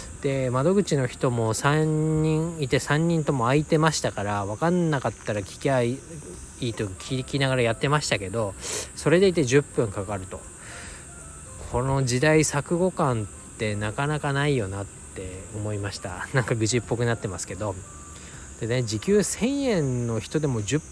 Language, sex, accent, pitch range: Japanese, male, native, 100-150 Hz